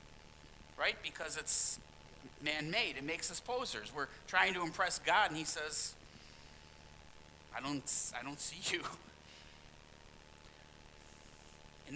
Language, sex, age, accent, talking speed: English, male, 50-69, American, 115 wpm